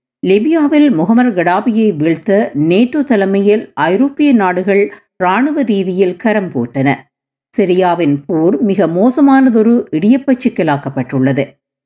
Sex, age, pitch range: female, 50-69, 150-220 Hz